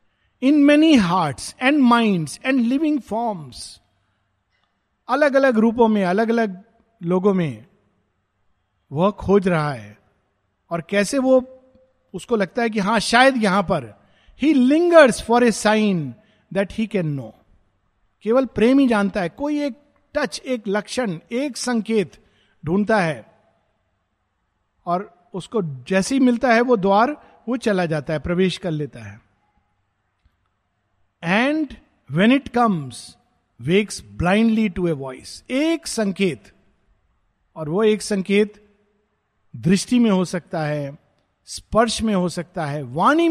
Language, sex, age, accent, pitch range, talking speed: Hindi, male, 50-69, native, 140-235 Hz, 135 wpm